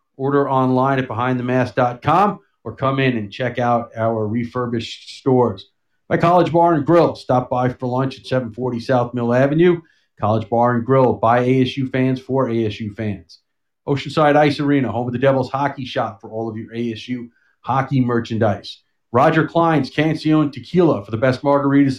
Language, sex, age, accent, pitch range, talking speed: English, male, 40-59, American, 115-135 Hz, 165 wpm